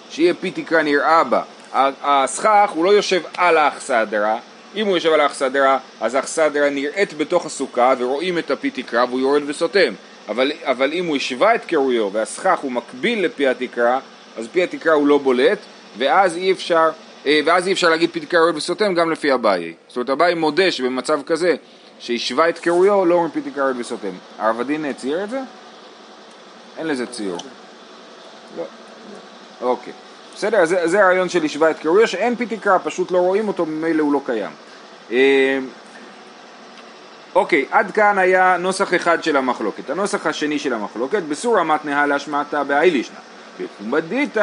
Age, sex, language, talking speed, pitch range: 30-49, male, Hebrew, 155 wpm, 145-195 Hz